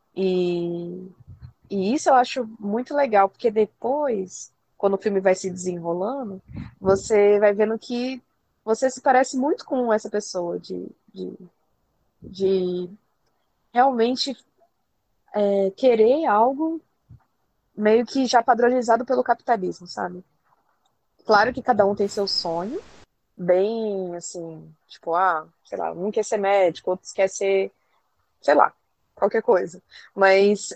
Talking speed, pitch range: 125 wpm, 185-250 Hz